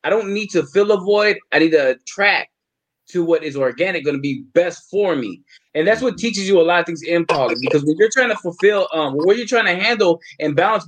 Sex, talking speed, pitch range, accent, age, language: male, 255 wpm, 160-225 Hz, American, 20-39, English